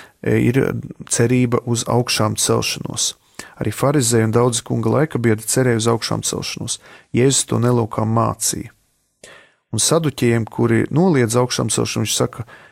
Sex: male